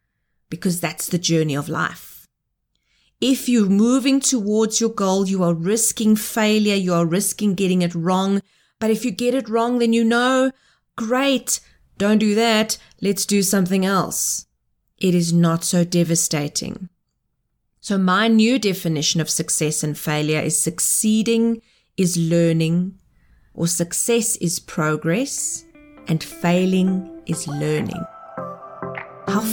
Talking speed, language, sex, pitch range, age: 130 wpm, English, female, 165-230 Hz, 30-49